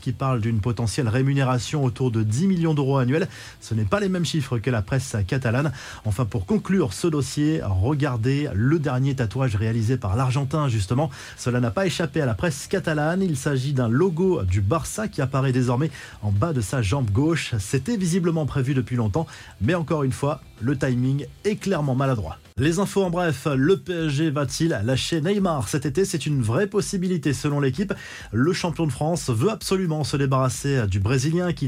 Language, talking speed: French, 190 wpm